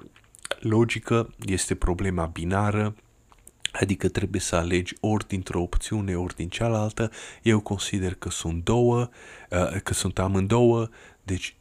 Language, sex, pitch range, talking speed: Romanian, male, 90-110 Hz, 120 wpm